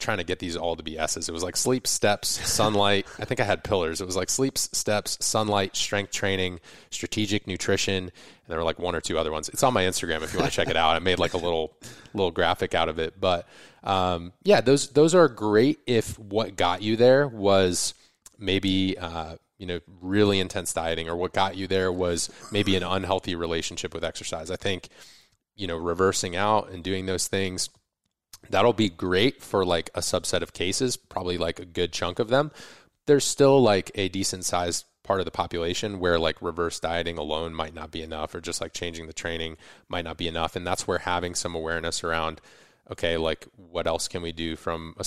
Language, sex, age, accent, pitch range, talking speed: English, male, 20-39, American, 85-100 Hz, 215 wpm